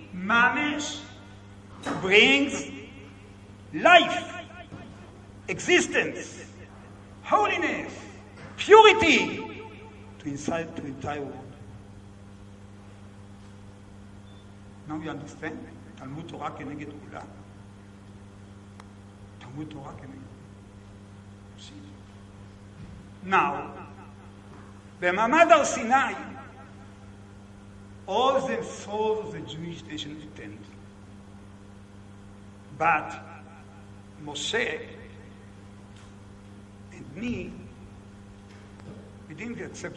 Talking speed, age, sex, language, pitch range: 55 wpm, 60-79, male, English, 100-155 Hz